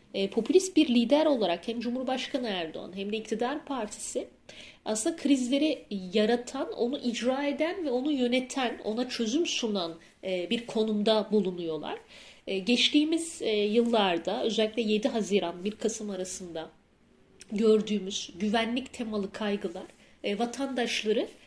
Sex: female